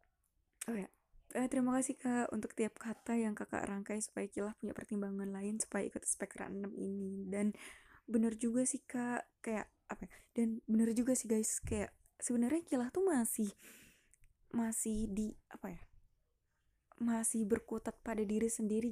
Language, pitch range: Indonesian, 205-240 Hz